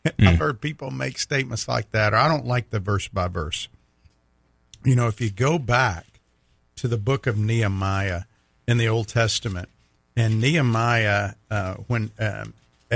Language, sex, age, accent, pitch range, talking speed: English, male, 50-69, American, 100-125 Hz, 160 wpm